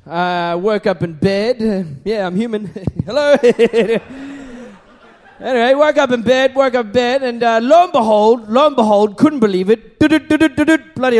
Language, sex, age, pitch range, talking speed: English, male, 30-49, 190-270 Hz, 165 wpm